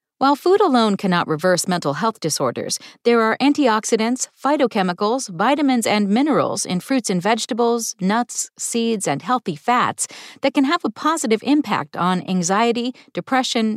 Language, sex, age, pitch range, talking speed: English, female, 40-59, 195-275 Hz, 145 wpm